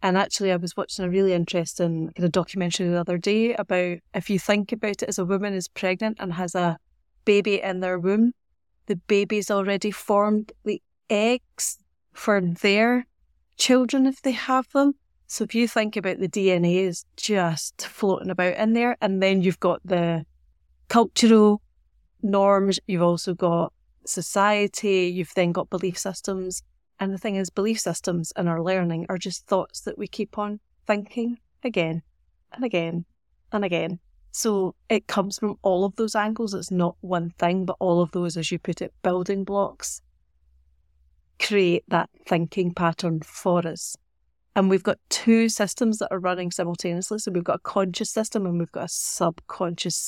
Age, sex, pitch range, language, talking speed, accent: 30-49, female, 175-210 Hz, English, 170 wpm, British